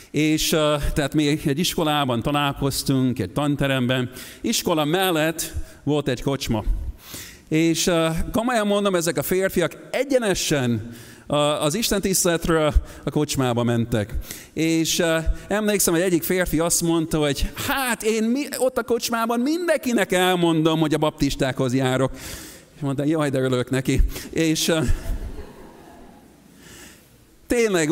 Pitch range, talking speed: 110-165 Hz, 115 wpm